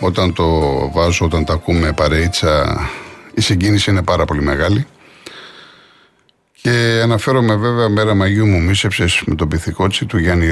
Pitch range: 90-115 Hz